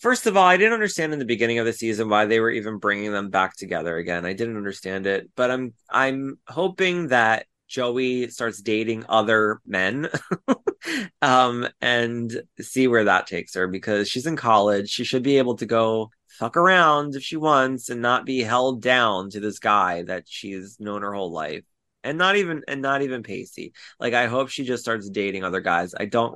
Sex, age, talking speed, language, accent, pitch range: male, 20-39, 205 wpm, English, American, 105-145 Hz